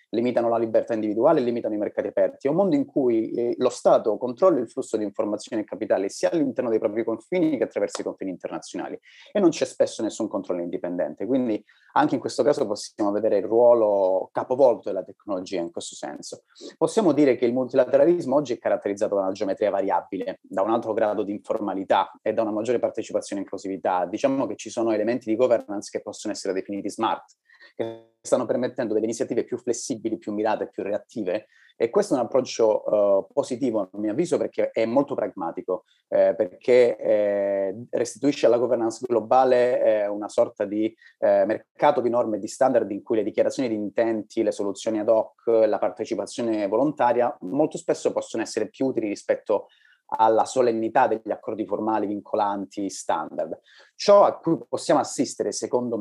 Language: Italian